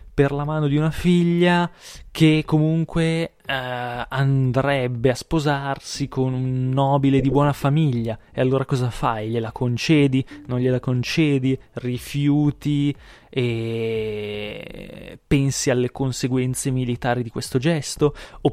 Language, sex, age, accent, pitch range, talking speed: Italian, male, 20-39, native, 115-145 Hz, 120 wpm